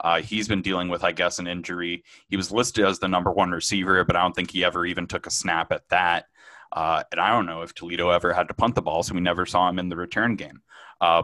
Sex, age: male, 20-39